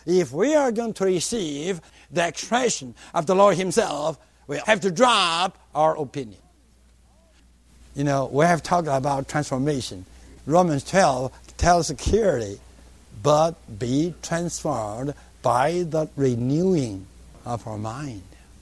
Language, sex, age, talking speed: English, male, 60-79, 120 wpm